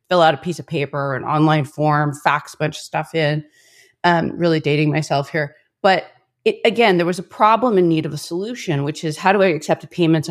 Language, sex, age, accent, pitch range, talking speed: English, female, 30-49, American, 155-195 Hz, 225 wpm